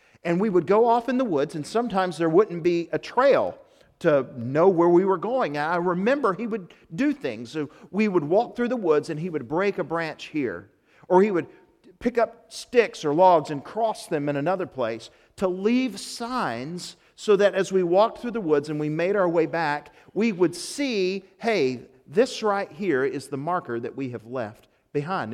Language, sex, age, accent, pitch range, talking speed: English, male, 50-69, American, 150-215 Hz, 205 wpm